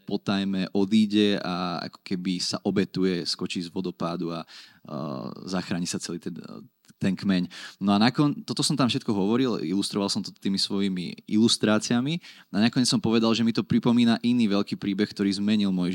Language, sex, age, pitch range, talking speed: Slovak, male, 20-39, 95-110 Hz, 175 wpm